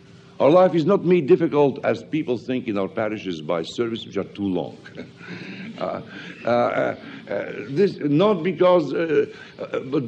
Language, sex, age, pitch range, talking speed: English, male, 60-79, 130-190 Hz, 160 wpm